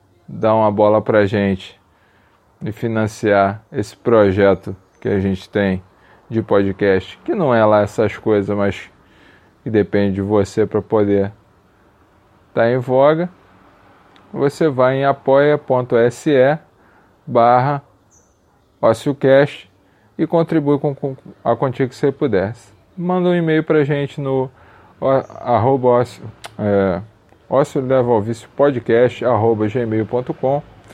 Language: English